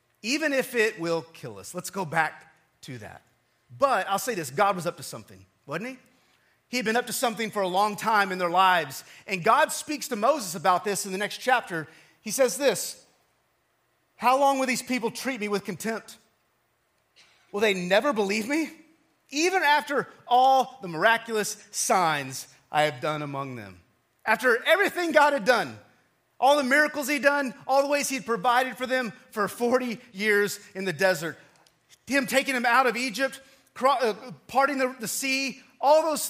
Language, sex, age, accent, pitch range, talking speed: English, male, 30-49, American, 180-265 Hz, 185 wpm